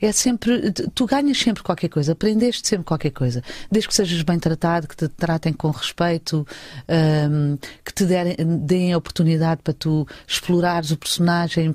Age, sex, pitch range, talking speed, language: 40-59, female, 155-210 Hz, 165 wpm, English